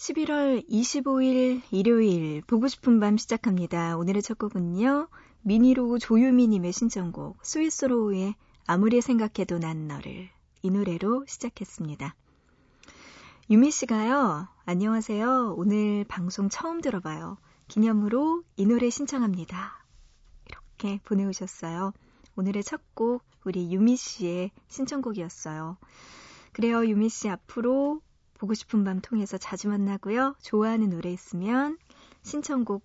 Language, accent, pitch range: Korean, native, 185-255 Hz